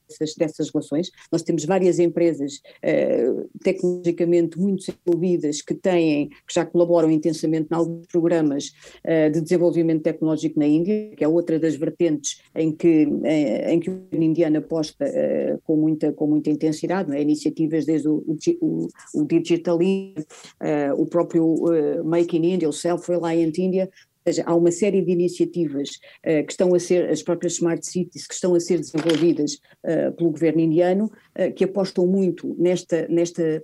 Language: Portuguese